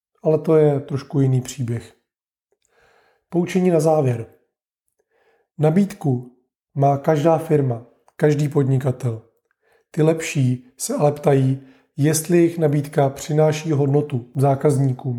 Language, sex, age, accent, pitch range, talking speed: Czech, male, 30-49, native, 135-155 Hz, 105 wpm